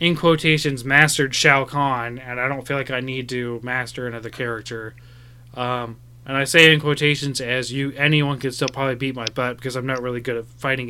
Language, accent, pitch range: English, American, 120-140 Hz